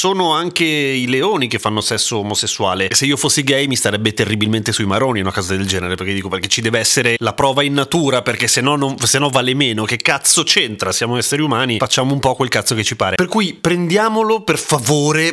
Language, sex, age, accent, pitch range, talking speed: Italian, male, 30-49, native, 110-145 Hz, 235 wpm